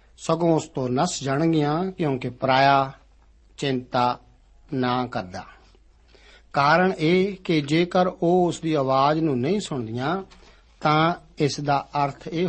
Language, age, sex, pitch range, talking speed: Punjabi, 60-79, male, 130-165 Hz, 125 wpm